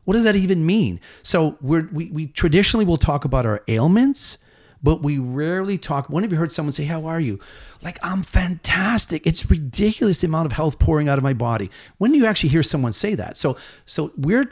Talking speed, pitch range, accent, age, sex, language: 220 wpm, 120-170 Hz, American, 40-59, male, English